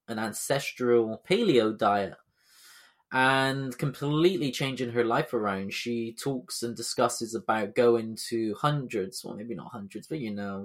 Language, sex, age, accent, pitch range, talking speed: English, male, 20-39, British, 115-140 Hz, 140 wpm